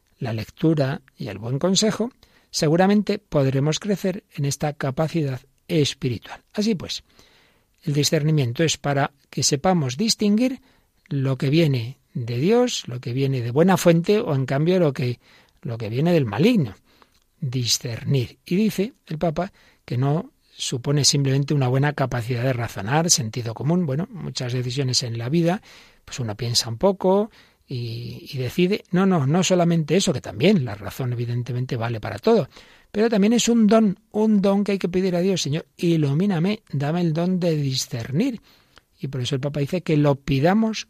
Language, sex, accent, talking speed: Spanish, male, Spanish, 165 wpm